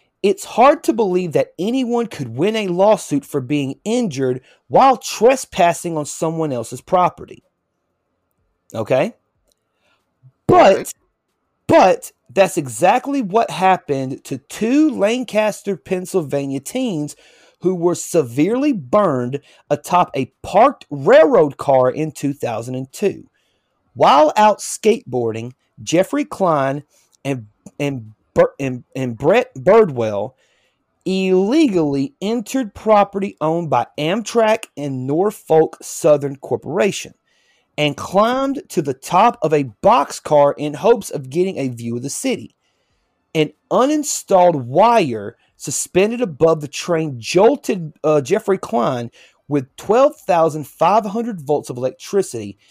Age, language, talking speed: 30-49, English, 110 wpm